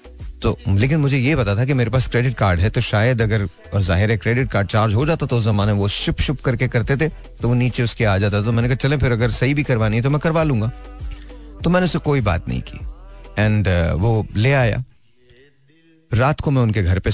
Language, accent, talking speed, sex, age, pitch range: Hindi, native, 85 wpm, male, 30-49, 95-120 Hz